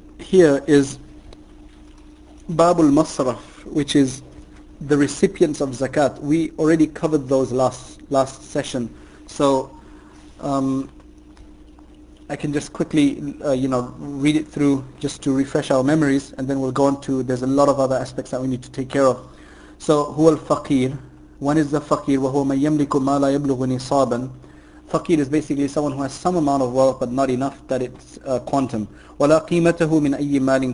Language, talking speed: English, 170 wpm